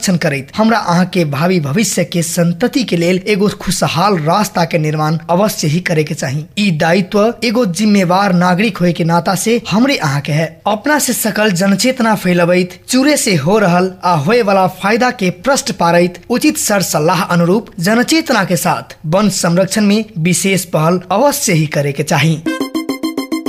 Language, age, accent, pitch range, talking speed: English, 20-39, Indian, 175-245 Hz, 130 wpm